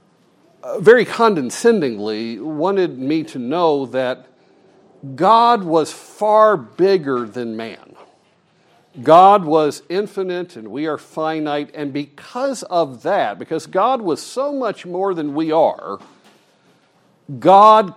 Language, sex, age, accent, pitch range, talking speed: English, male, 50-69, American, 145-195 Hz, 115 wpm